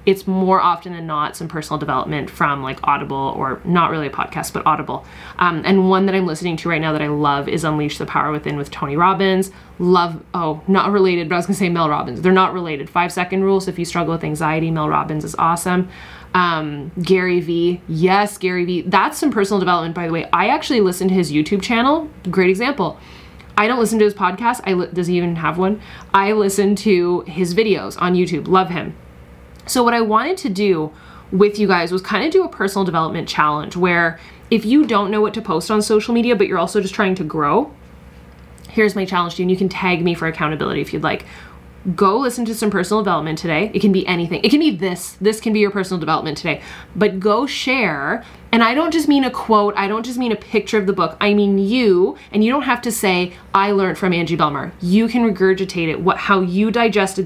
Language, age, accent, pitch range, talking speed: English, 20-39, American, 165-205 Hz, 235 wpm